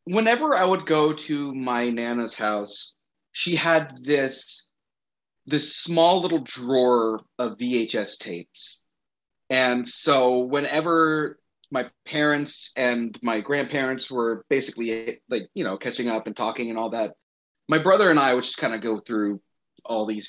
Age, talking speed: 30-49, 150 wpm